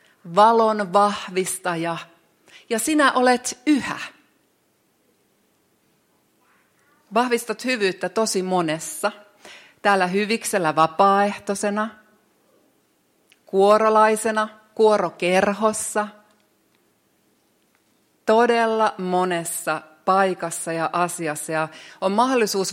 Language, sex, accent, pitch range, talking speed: Finnish, female, native, 165-220 Hz, 60 wpm